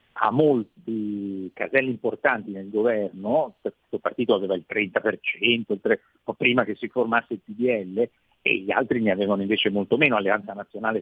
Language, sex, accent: Italian, male, native